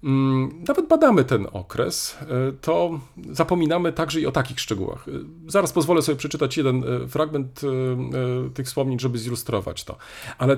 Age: 40-59